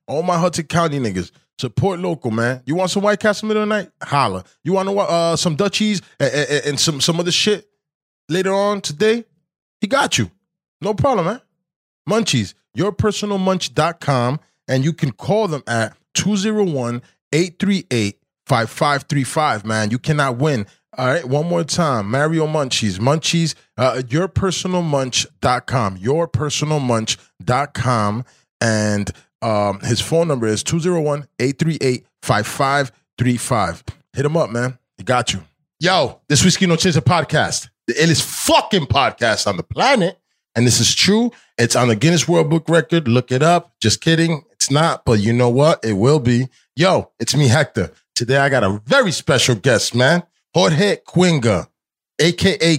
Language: English